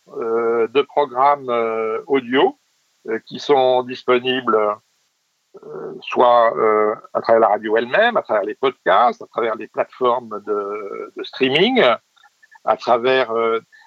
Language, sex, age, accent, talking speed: French, male, 60-79, French, 135 wpm